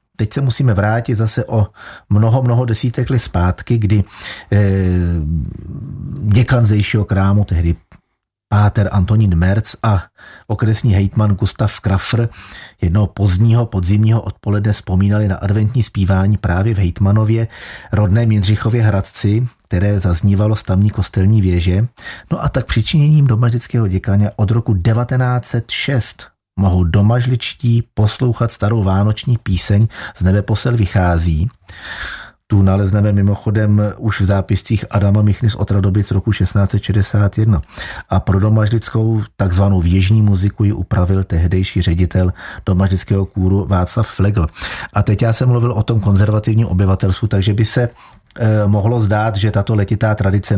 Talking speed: 125 wpm